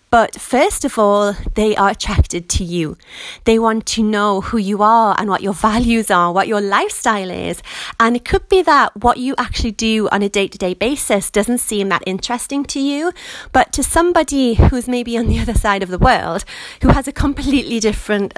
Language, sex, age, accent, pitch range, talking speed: English, female, 30-49, British, 205-270 Hz, 200 wpm